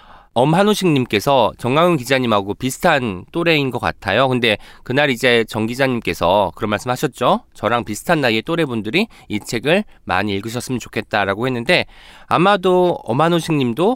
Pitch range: 110-175 Hz